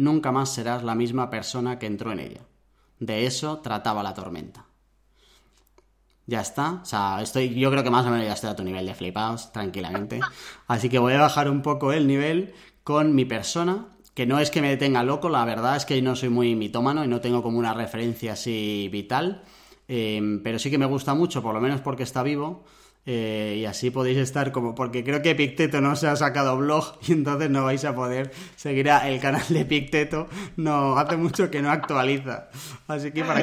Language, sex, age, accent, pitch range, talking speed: Spanish, male, 20-39, Spanish, 120-150 Hz, 210 wpm